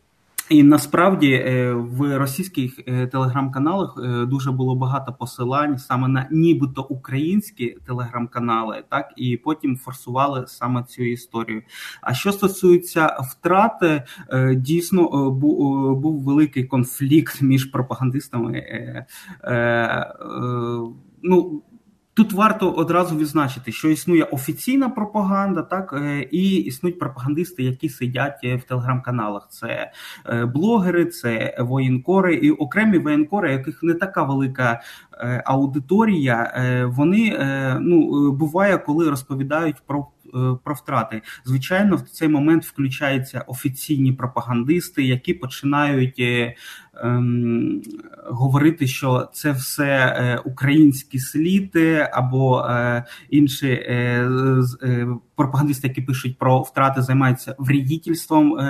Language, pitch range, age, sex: Ukrainian, 125-155 Hz, 20-39, male